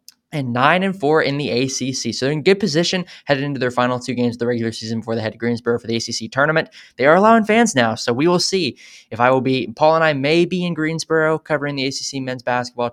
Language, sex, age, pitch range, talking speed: English, male, 20-39, 115-155 Hz, 260 wpm